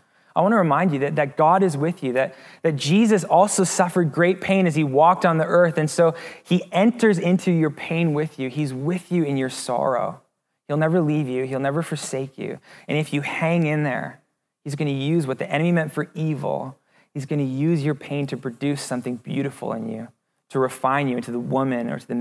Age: 20-39